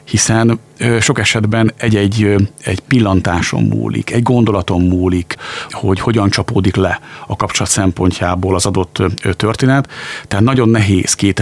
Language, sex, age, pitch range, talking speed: Hungarian, male, 50-69, 95-115 Hz, 125 wpm